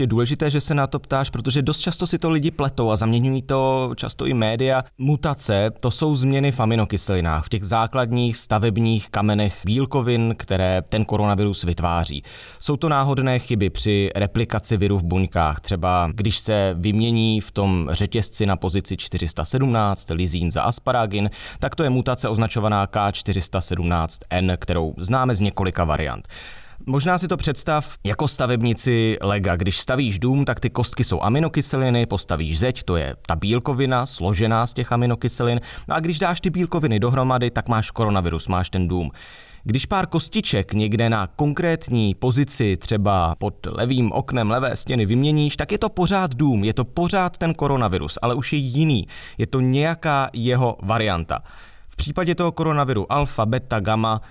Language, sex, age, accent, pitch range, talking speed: Czech, male, 20-39, native, 95-130 Hz, 160 wpm